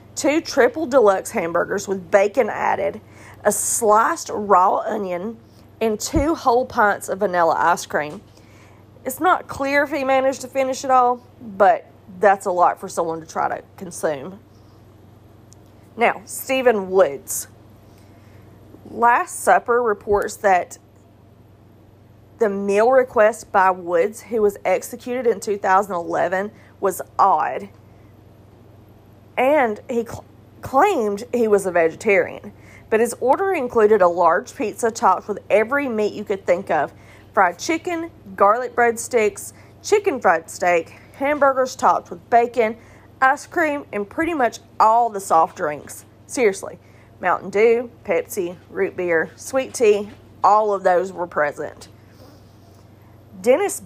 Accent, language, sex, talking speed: American, English, female, 130 wpm